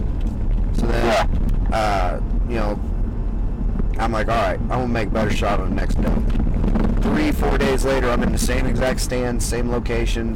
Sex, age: male, 30-49